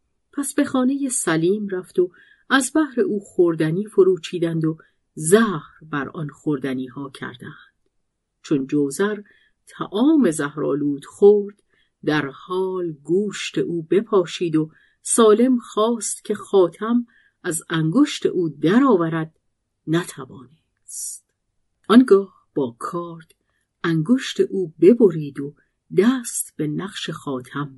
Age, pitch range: 50-69, 150-215 Hz